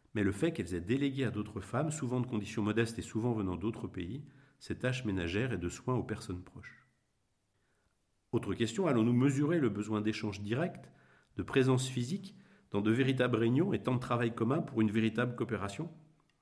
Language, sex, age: French, male, 50-69